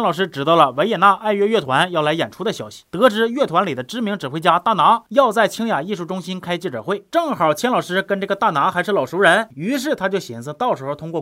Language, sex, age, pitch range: Chinese, male, 30-49, 160-230 Hz